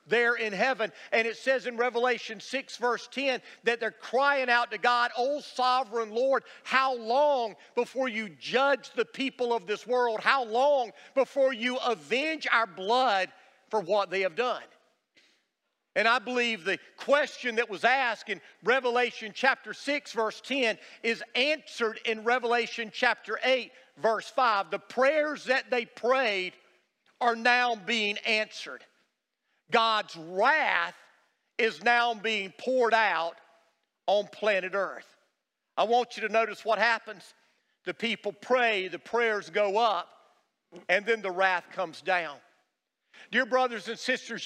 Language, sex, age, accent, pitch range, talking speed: English, male, 50-69, American, 215-255 Hz, 145 wpm